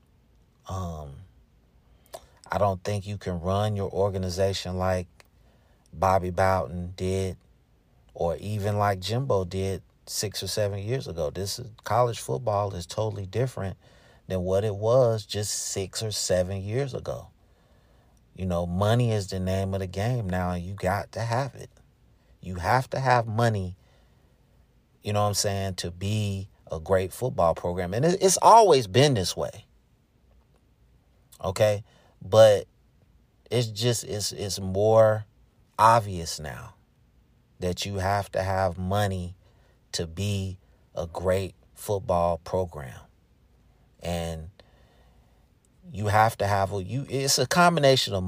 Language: English